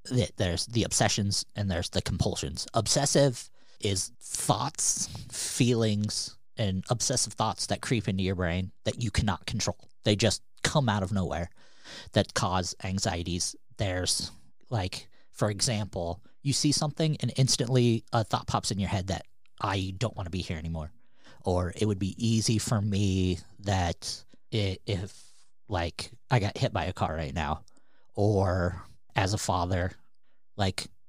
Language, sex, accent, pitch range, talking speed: English, male, American, 90-115 Hz, 150 wpm